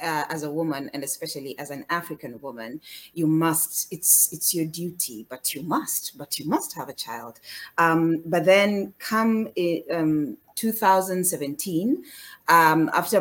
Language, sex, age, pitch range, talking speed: English, female, 30-49, 155-190 Hz, 150 wpm